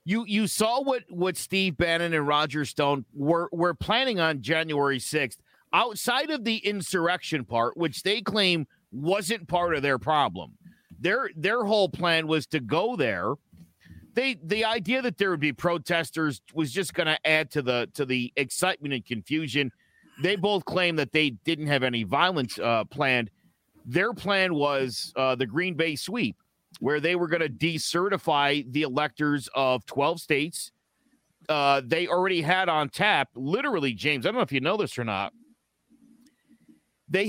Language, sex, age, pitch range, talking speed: English, male, 50-69, 145-190 Hz, 165 wpm